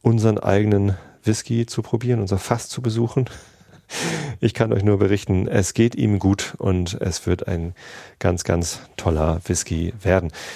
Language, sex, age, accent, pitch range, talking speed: German, male, 40-59, German, 95-110 Hz, 155 wpm